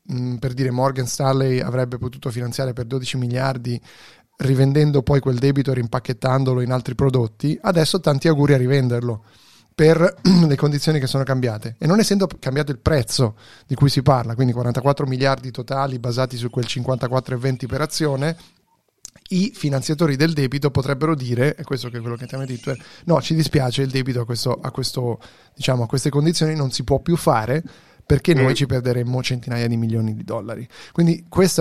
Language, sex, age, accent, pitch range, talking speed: Italian, male, 30-49, native, 125-145 Hz, 175 wpm